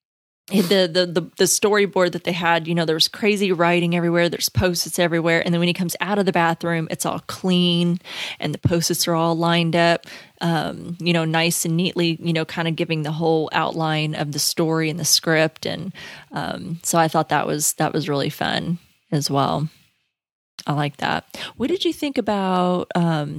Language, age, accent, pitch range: English, 30-49, American, 160-185 Hz